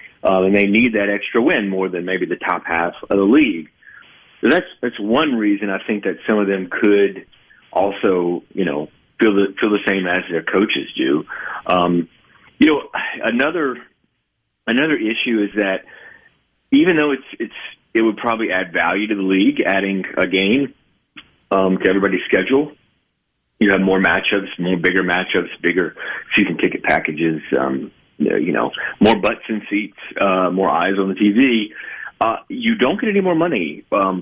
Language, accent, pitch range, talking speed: English, American, 95-115 Hz, 175 wpm